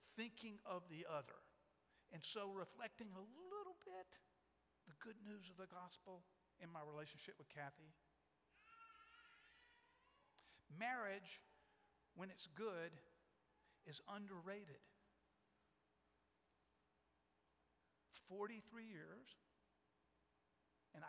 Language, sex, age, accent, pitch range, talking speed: English, male, 50-69, American, 145-225 Hz, 85 wpm